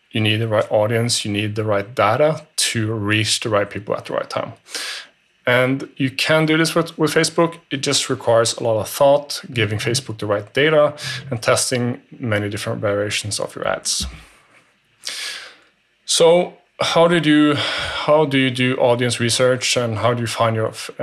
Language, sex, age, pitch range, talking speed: English, male, 30-49, 110-135 Hz, 175 wpm